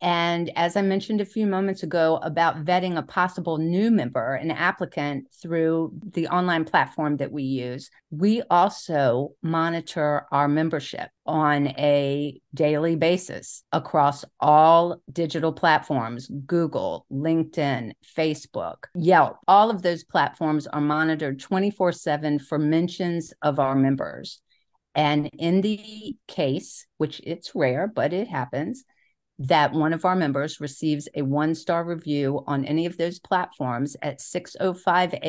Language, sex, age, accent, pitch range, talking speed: English, female, 50-69, American, 145-175 Hz, 135 wpm